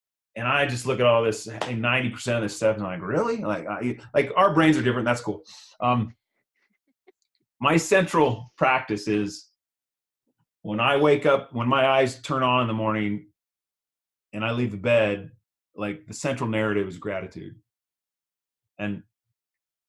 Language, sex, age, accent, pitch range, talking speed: English, male, 30-49, American, 105-145 Hz, 155 wpm